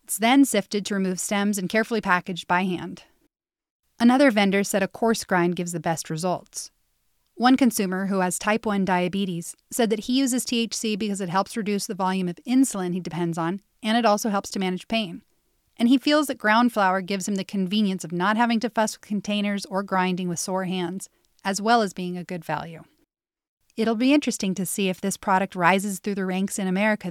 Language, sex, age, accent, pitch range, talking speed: English, female, 30-49, American, 180-225 Hz, 210 wpm